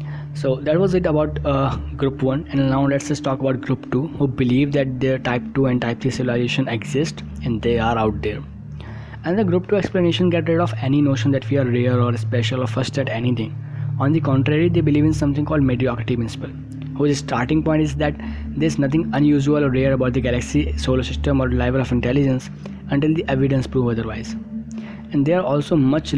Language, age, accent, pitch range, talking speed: English, 20-39, Indian, 120-150 Hz, 210 wpm